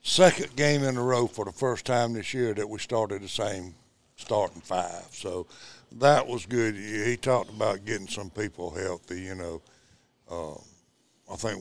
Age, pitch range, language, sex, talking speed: 60-79, 95-115 Hz, English, male, 175 wpm